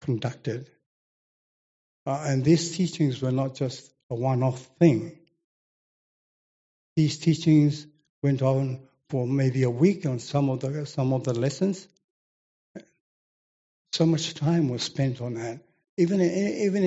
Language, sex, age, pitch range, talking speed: English, male, 60-79, 135-165 Hz, 130 wpm